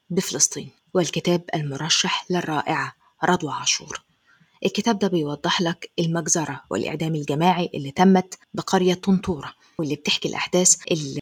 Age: 20-39